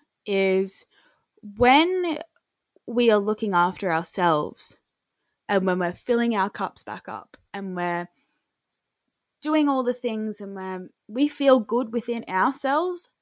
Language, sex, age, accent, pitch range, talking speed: English, female, 10-29, Australian, 195-275 Hz, 125 wpm